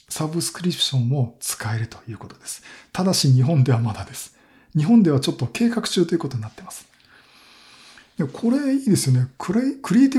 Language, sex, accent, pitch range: Japanese, male, native, 120-175 Hz